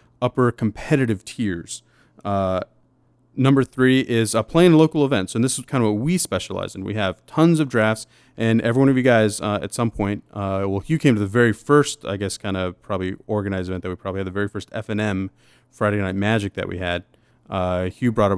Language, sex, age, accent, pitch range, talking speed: English, male, 30-49, American, 100-125 Hz, 210 wpm